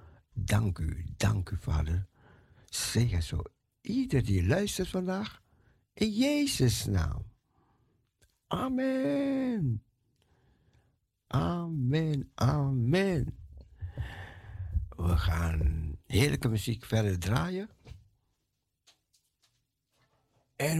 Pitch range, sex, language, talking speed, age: 100-145 Hz, male, Dutch, 70 wpm, 60-79